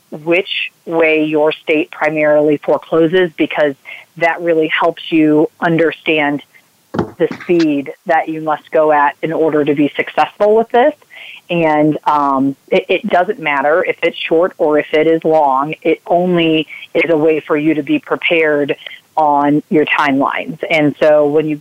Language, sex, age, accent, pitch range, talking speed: English, female, 30-49, American, 150-170 Hz, 160 wpm